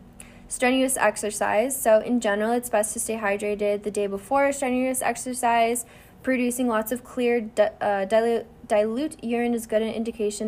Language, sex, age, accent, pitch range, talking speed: English, female, 10-29, American, 205-245 Hz, 160 wpm